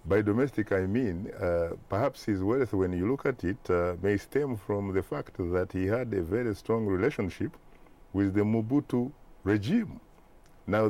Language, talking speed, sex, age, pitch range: English, 170 wpm, male, 50-69, 95-130 Hz